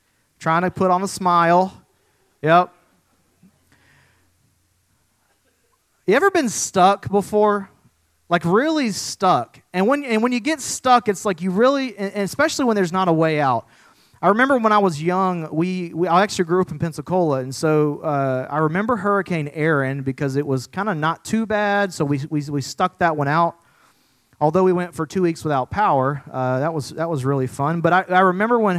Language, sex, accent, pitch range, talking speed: English, male, American, 150-200 Hz, 190 wpm